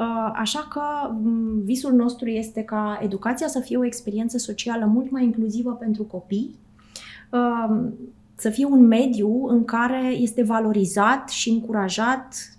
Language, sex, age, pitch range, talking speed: Romanian, female, 20-39, 210-250 Hz, 130 wpm